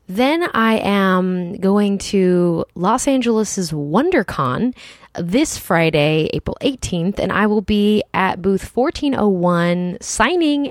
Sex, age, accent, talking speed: female, 20-39, American, 110 wpm